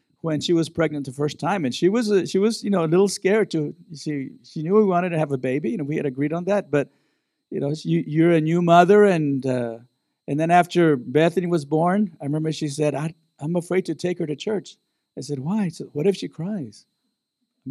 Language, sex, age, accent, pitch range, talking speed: English, male, 50-69, American, 145-190 Hz, 245 wpm